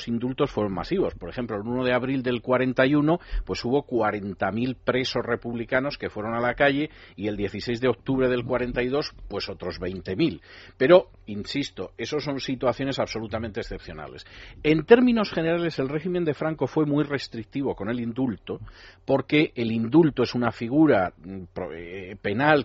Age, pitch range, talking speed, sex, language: 40-59, 115-145 Hz, 155 wpm, male, Spanish